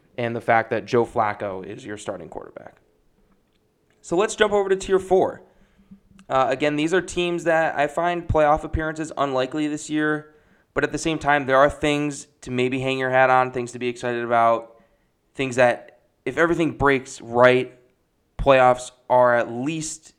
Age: 20-39